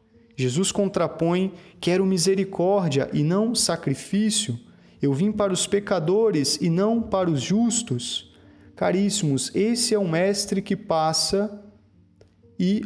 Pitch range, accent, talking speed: 140-195 Hz, Brazilian, 115 wpm